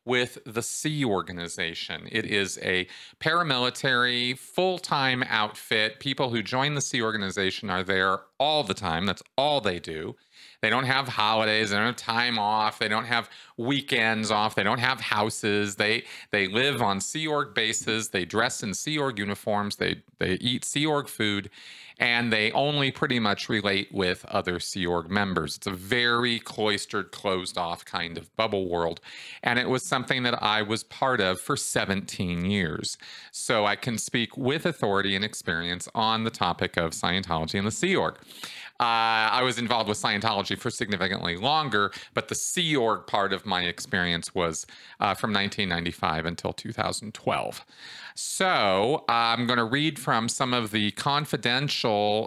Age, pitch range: 40-59, 95-120 Hz